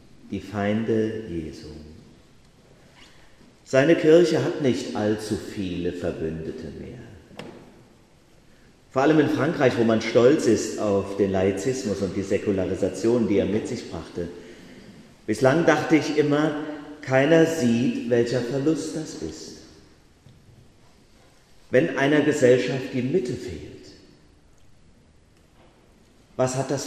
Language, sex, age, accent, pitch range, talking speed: German, male, 40-59, German, 100-160 Hz, 110 wpm